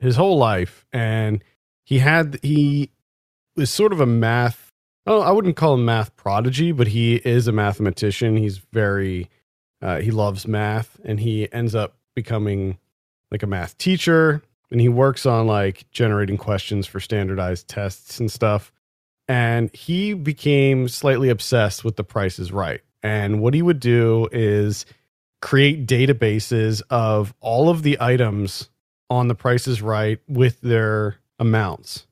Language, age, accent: English, 40-59, American